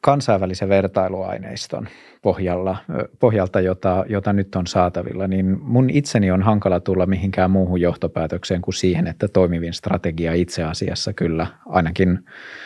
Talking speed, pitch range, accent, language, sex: 125 wpm, 85-95 Hz, native, Finnish, male